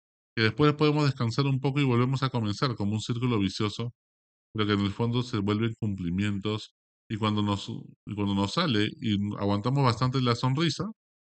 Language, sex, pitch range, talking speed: Spanish, male, 90-120 Hz, 170 wpm